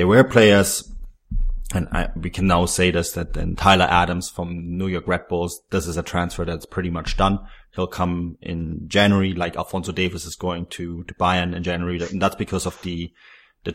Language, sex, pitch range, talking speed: English, male, 85-100 Hz, 205 wpm